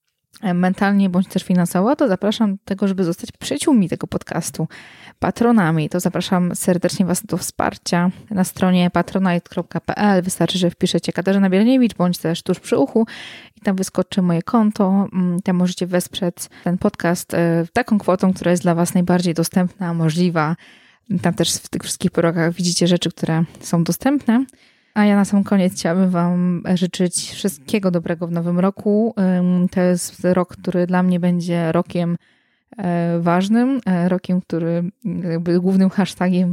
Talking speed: 150 wpm